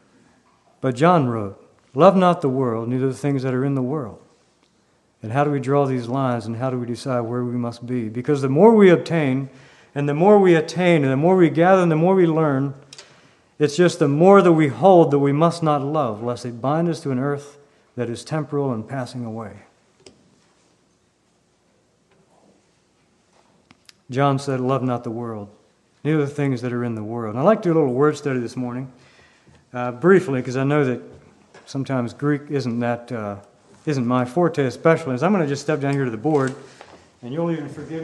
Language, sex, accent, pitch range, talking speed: English, male, American, 120-160 Hz, 205 wpm